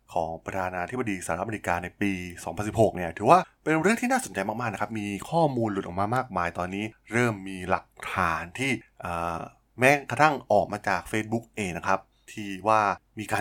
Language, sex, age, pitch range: Thai, male, 20-39, 95-120 Hz